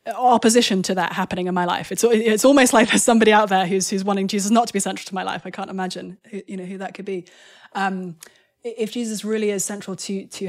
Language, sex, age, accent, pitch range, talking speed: English, female, 20-39, British, 175-200 Hz, 245 wpm